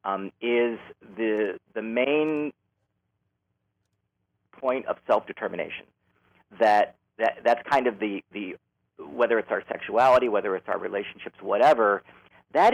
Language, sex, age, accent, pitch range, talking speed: English, male, 40-59, American, 105-140 Hz, 120 wpm